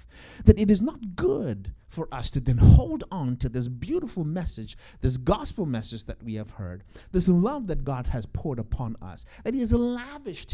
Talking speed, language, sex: 195 wpm, English, male